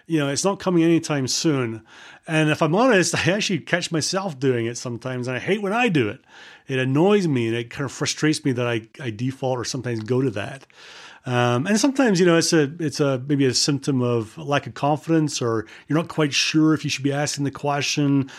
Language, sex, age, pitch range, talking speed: English, male, 30-49, 120-155 Hz, 230 wpm